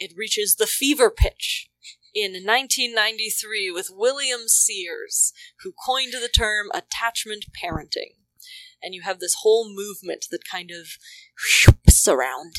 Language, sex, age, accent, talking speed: English, female, 20-39, American, 125 wpm